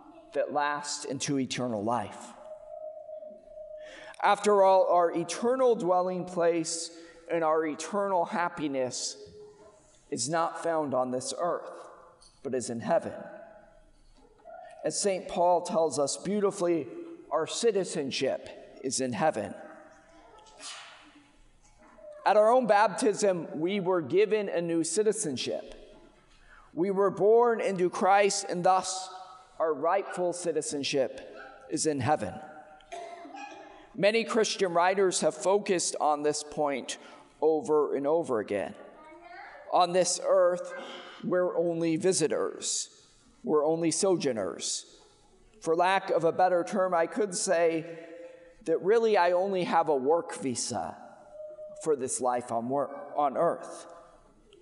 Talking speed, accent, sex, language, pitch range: 115 wpm, American, male, English, 160-230 Hz